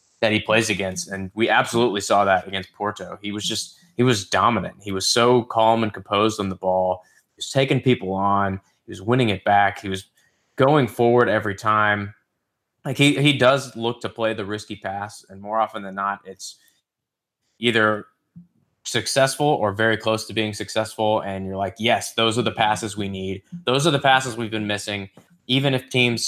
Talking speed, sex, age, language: 195 wpm, male, 20-39, English